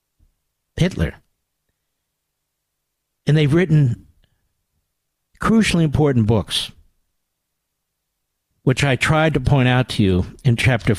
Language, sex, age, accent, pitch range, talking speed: English, male, 60-79, American, 100-145 Hz, 95 wpm